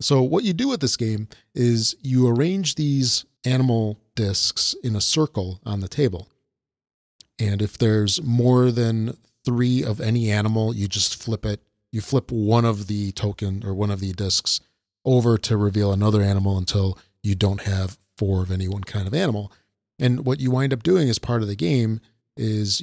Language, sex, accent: English, male, American